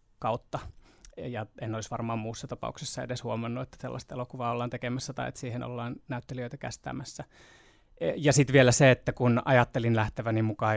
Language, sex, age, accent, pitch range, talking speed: Finnish, male, 20-39, native, 115-130 Hz, 165 wpm